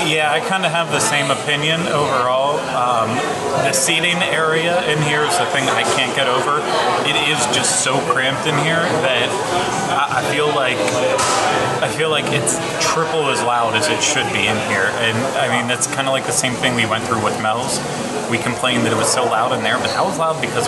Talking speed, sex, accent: 220 wpm, male, American